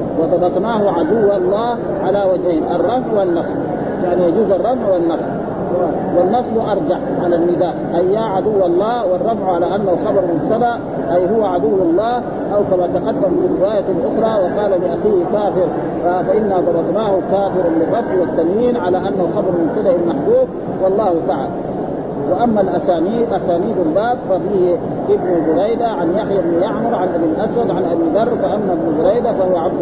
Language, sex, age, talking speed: Arabic, male, 50-69, 145 wpm